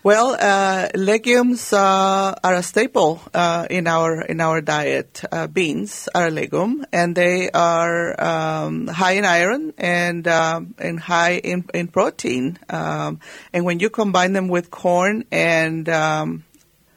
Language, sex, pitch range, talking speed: English, female, 170-200 Hz, 150 wpm